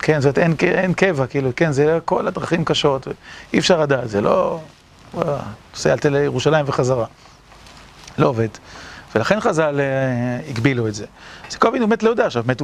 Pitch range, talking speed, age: 135-180 Hz, 170 wpm, 40-59